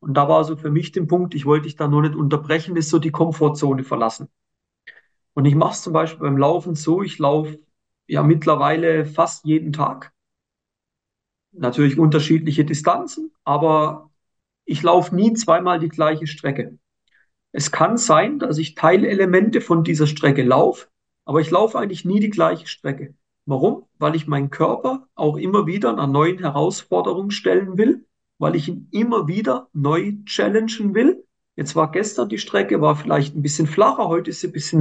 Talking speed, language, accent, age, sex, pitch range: 175 wpm, German, German, 40-59, male, 155-205 Hz